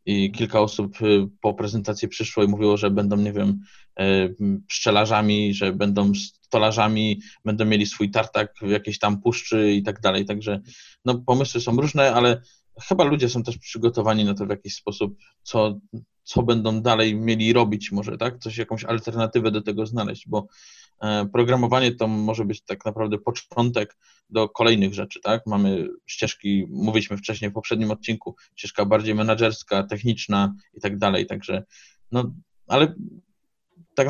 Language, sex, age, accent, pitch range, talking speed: Polish, male, 20-39, native, 105-115 Hz, 155 wpm